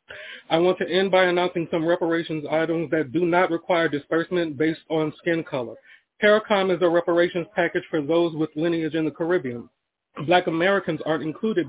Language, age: English, 40-59